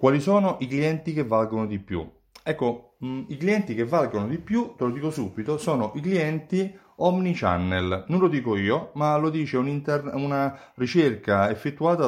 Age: 30-49